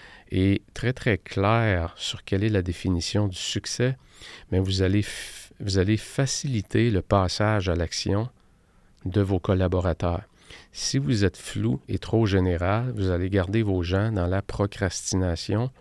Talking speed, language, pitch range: 150 wpm, French, 95-115 Hz